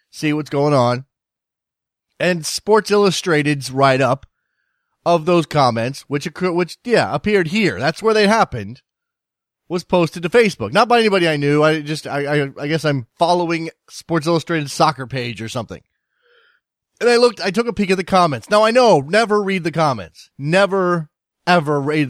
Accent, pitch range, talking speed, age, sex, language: American, 135-190 Hz, 175 wpm, 30-49, male, English